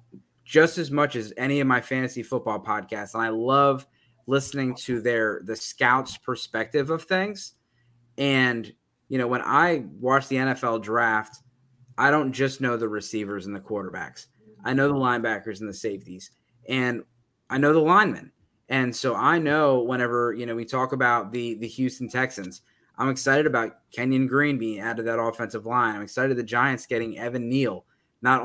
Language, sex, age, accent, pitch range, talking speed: English, male, 20-39, American, 115-135 Hz, 175 wpm